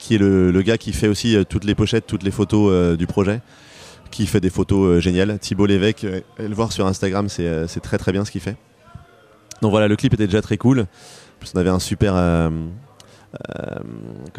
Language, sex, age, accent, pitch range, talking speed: French, male, 30-49, French, 95-115 Hz, 215 wpm